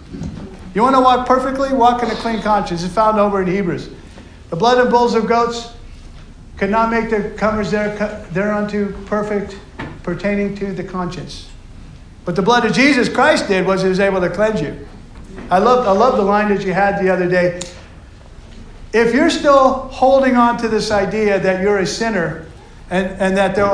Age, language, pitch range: 50-69, English, 190-240 Hz